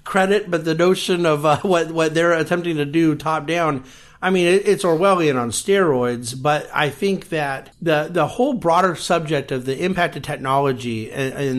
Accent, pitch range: American, 130-160 Hz